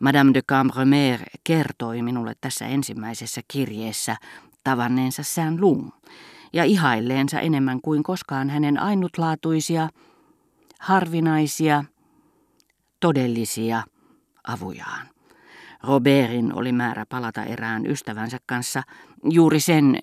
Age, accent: 40-59, native